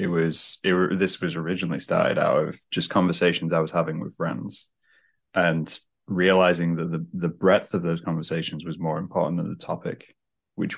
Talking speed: 180 wpm